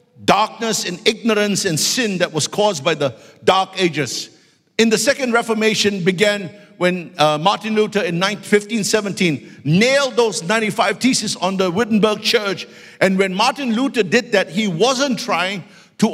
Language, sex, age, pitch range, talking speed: English, male, 50-69, 190-230 Hz, 150 wpm